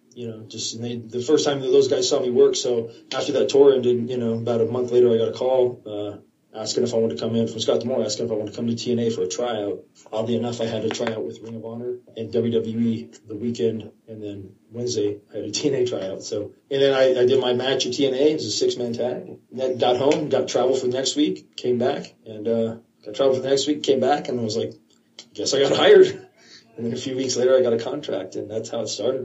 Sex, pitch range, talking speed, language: male, 110-130 Hz, 275 wpm, English